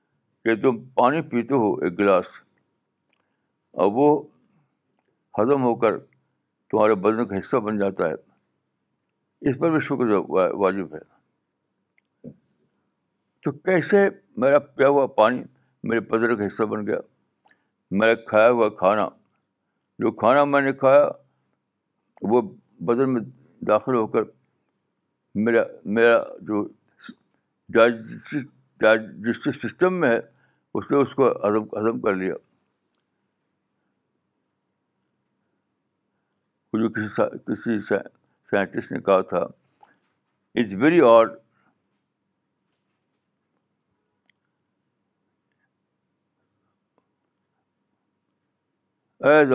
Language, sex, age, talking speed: Urdu, male, 60-79, 90 wpm